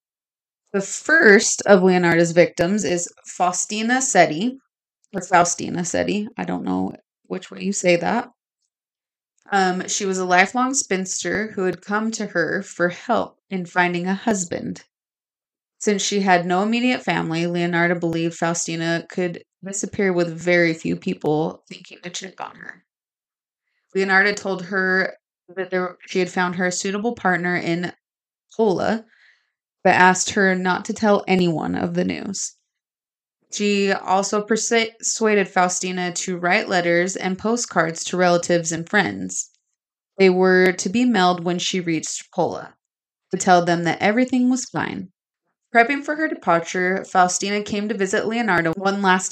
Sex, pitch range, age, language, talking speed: female, 175-205 Hz, 20-39, English, 145 wpm